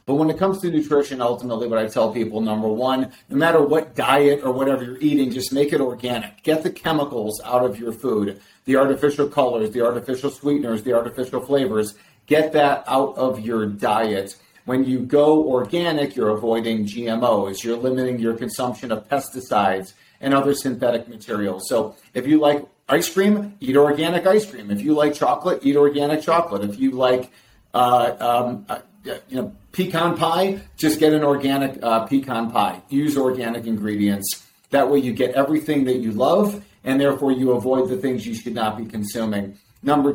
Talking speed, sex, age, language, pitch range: 180 wpm, male, 40-59, English, 115-145 Hz